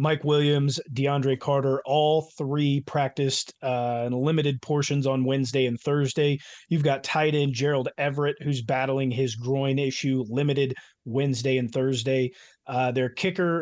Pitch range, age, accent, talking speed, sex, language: 130-150 Hz, 30-49, American, 145 wpm, male, English